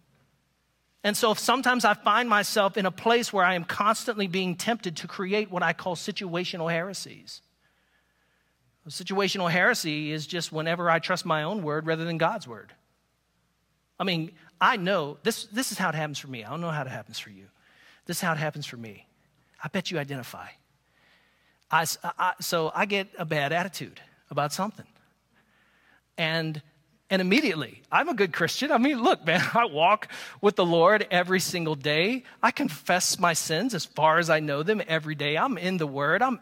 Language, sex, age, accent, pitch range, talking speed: English, male, 40-59, American, 160-210 Hz, 190 wpm